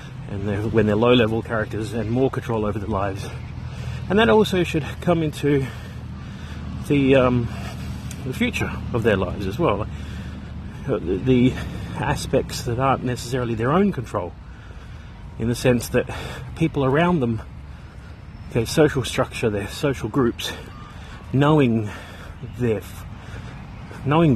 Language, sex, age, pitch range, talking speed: English, male, 30-49, 105-135 Hz, 125 wpm